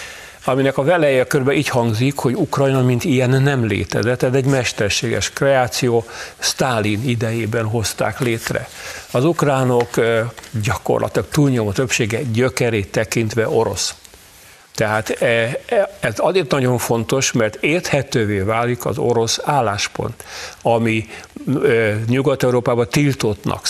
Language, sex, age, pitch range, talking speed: Hungarian, male, 50-69, 110-135 Hz, 105 wpm